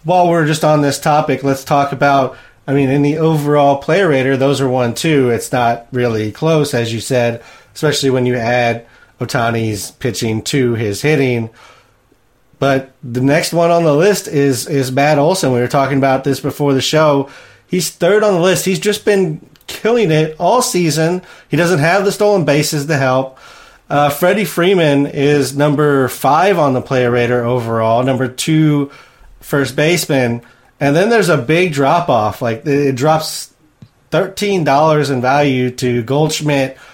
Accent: American